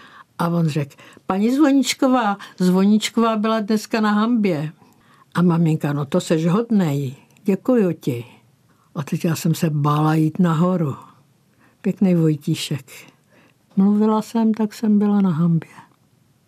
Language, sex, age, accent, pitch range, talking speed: Czech, female, 60-79, native, 155-195 Hz, 125 wpm